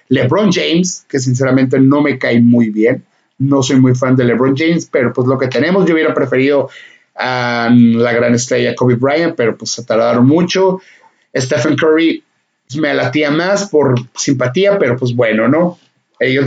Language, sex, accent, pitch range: Spanish, male, Mexican, 130-200 Hz